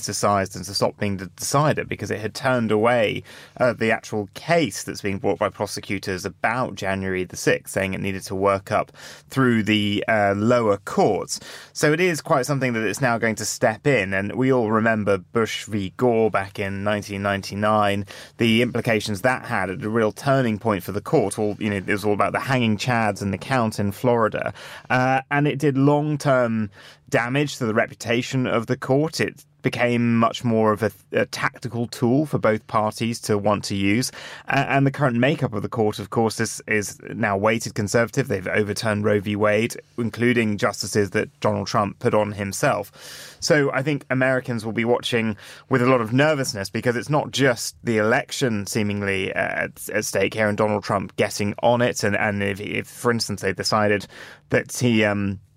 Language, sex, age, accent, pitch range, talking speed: English, male, 30-49, British, 105-125 Hz, 195 wpm